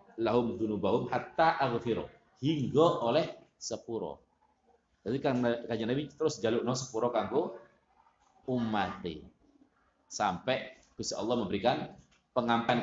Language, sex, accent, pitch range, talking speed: Indonesian, male, native, 115-150 Hz, 110 wpm